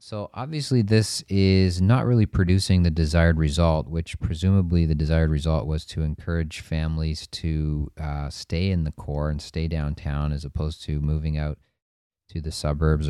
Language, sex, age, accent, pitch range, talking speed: English, male, 30-49, American, 75-90 Hz, 165 wpm